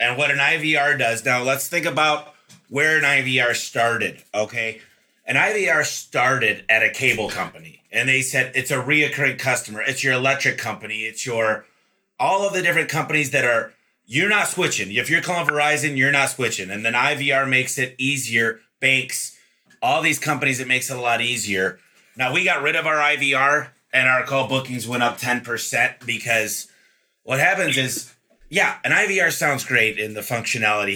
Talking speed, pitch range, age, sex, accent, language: 180 wpm, 115-145 Hz, 30-49, male, American, English